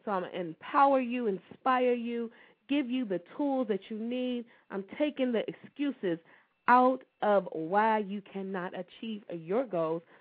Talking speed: 160 wpm